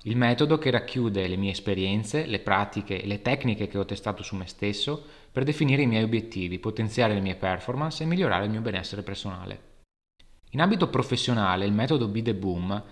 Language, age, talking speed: Italian, 20-39, 190 wpm